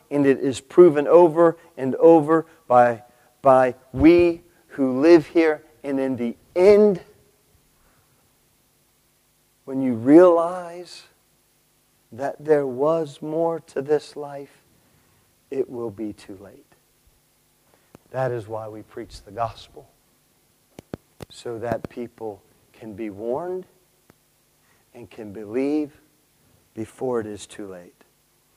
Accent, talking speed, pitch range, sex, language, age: American, 110 wpm, 115-160 Hz, male, English, 50-69